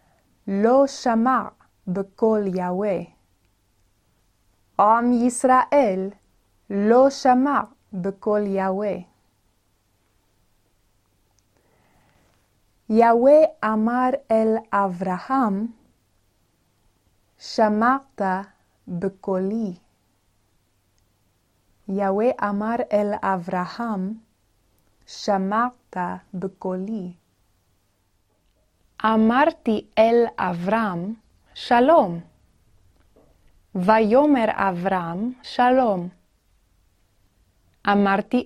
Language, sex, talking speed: Hebrew, female, 45 wpm